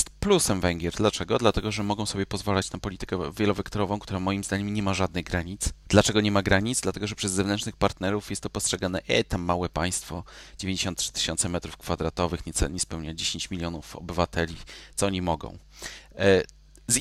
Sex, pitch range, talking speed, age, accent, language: male, 90-110 Hz, 170 wpm, 30-49, native, Polish